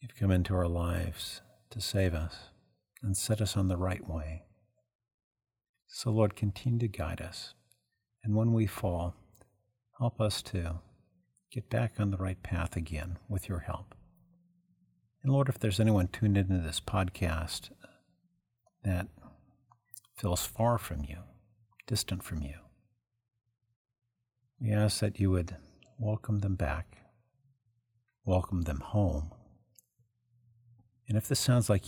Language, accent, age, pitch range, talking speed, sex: English, American, 50-69, 90-115 Hz, 135 wpm, male